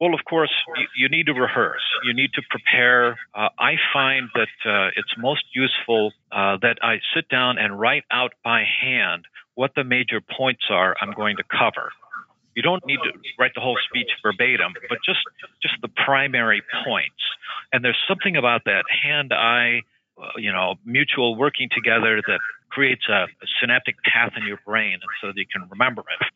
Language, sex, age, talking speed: English, male, 50-69, 180 wpm